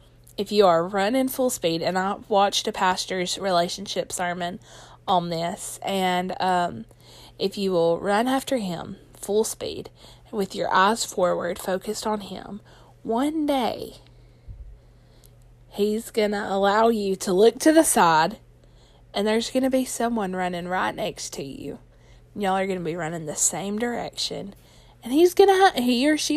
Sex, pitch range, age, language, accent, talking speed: female, 180-235 Hz, 20-39, English, American, 165 wpm